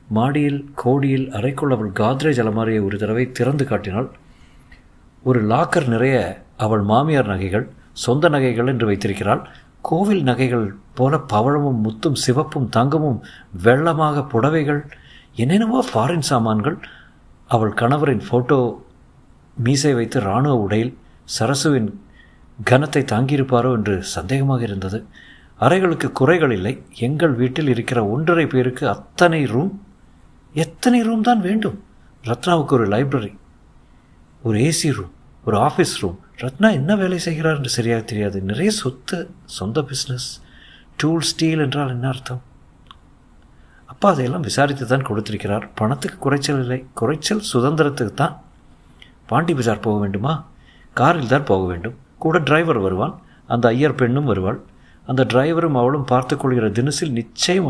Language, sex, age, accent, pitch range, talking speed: Tamil, male, 50-69, native, 110-150 Hz, 110 wpm